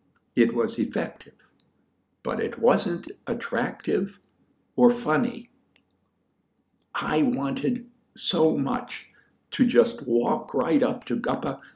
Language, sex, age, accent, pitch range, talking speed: English, male, 60-79, American, 200-245 Hz, 100 wpm